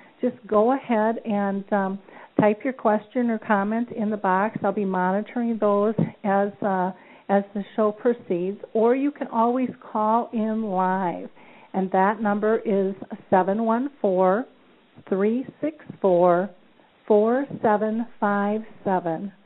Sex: female